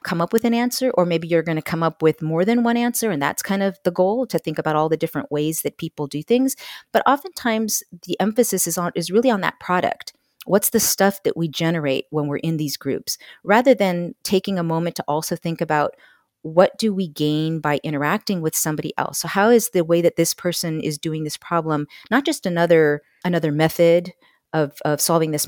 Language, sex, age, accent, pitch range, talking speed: English, female, 40-59, American, 160-200 Hz, 225 wpm